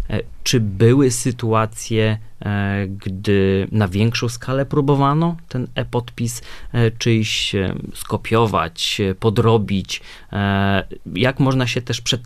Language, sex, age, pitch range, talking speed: Polish, male, 30-49, 110-135 Hz, 90 wpm